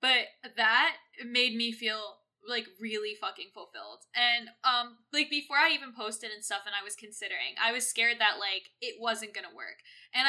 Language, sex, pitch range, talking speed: English, female, 215-270 Hz, 185 wpm